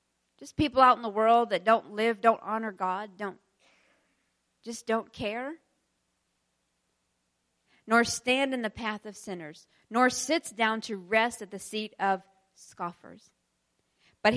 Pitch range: 175-250 Hz